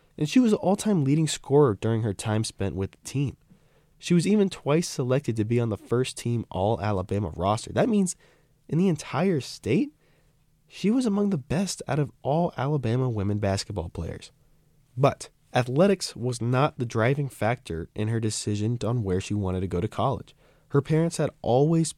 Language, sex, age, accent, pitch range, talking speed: English, male, 20-39, American, 105-155 Hz, 185 wpm